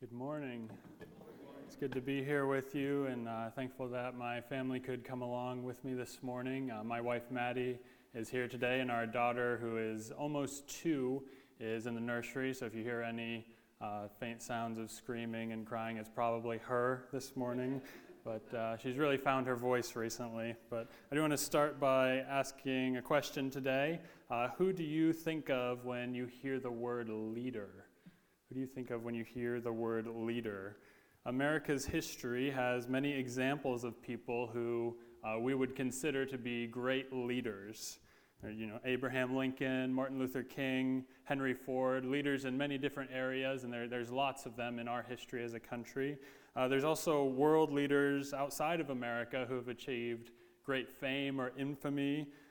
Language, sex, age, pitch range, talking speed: English, male, 20-39, 120-135 Hz, 180 wpm